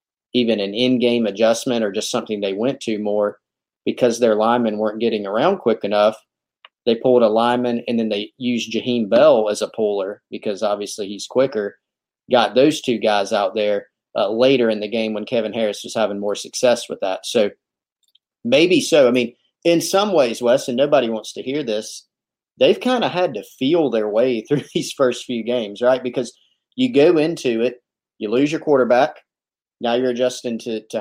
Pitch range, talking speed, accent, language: 110-125 Hz, 190 wpm, American, English